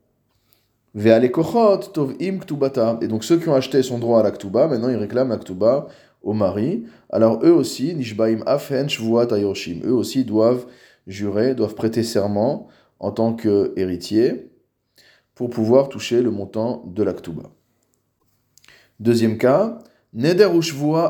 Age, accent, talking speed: 20-39, French, 115 wpm